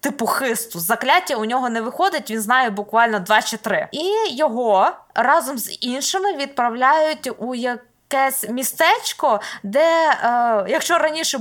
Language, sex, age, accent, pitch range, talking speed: Ukrainian, female, 20-39, native, 225-305 Hz, 140 wpm